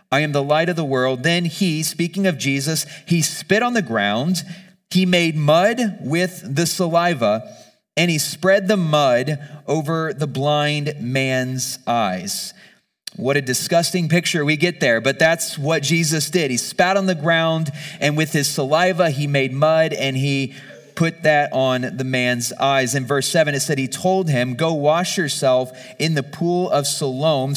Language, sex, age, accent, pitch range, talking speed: English, male, 30-49, American, 135-165 Hz, 175 wpm